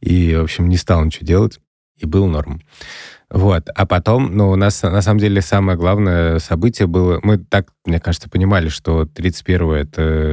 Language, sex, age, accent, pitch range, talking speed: Russian, male, 20-39, native, 80-100 Hz, 180 wpm